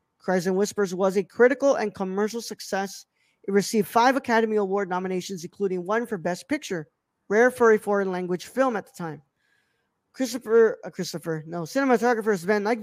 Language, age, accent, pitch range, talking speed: English, 20-39, American, 195-245 Hz, 170 wpm